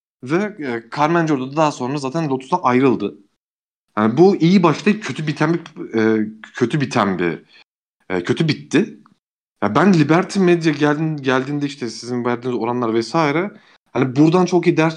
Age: 40-59